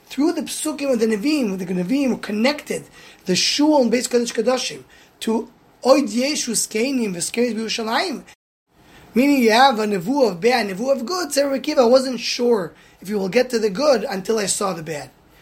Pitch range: 215-275 Hz